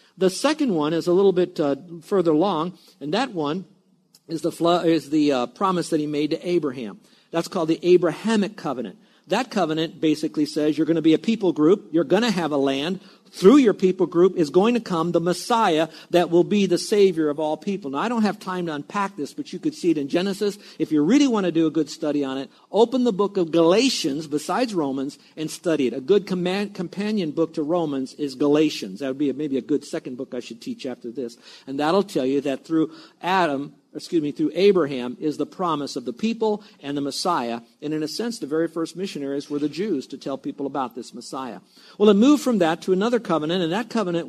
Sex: male